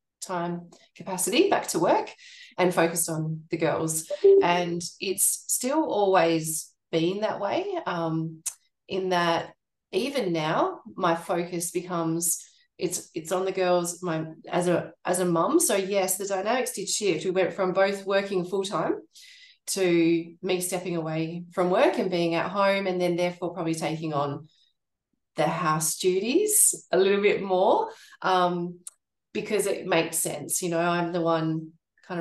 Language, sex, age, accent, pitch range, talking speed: English, female, 20-39, Australian, 160-185 Hz, 155 wpm